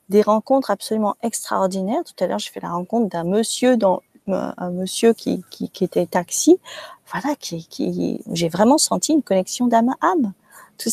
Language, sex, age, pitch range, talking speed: French, female, 40-59, 195-275 Hz, 180 wpm